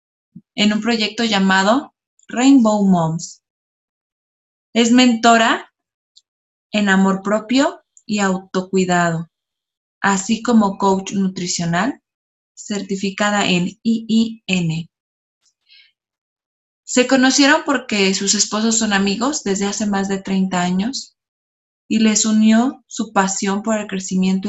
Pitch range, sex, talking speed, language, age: 185-225 Hz, female, 100 wpm, Spanish, 20-39